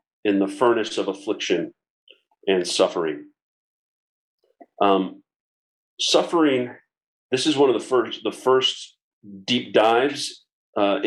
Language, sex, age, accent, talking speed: English, male, 40-59, American, 105 wpm